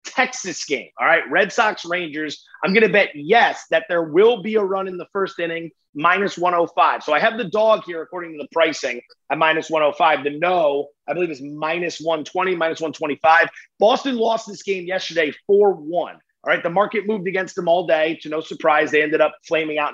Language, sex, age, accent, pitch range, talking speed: English, male, 30-49, American, 155-200 Hz, 205 wpm